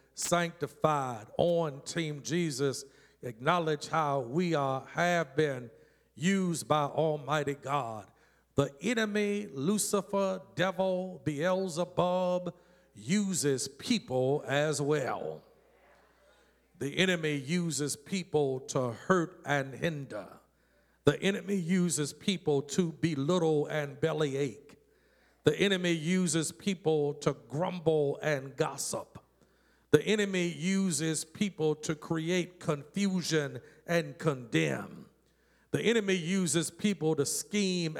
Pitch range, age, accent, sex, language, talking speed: 150-190 Hz, 50-69, American, male, English, 100 wpm